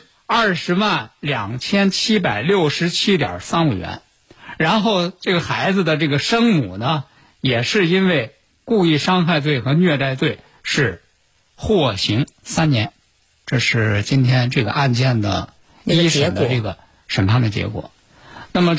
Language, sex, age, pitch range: Chinese, male, 60-79, 115-170 Hz